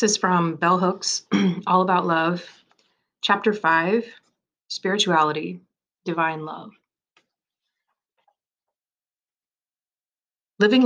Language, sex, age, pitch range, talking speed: English, female, 30-49, 165-205 Hz, 70 wpm